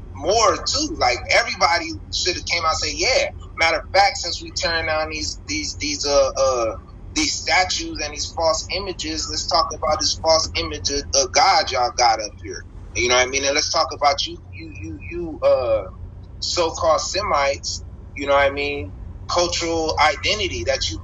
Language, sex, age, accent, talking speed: English, male, 30-49, American, 190 wpm